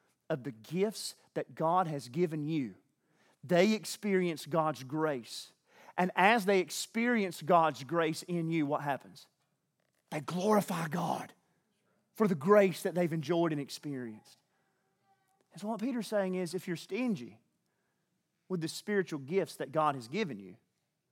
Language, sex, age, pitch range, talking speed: English, male, 30-49, 150-190 Hz, 150 wpm